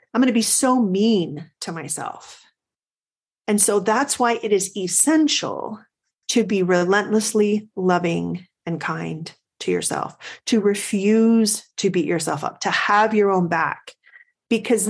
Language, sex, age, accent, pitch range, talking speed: English, female, 40-59, American, 185-260 Hz, 140 wpm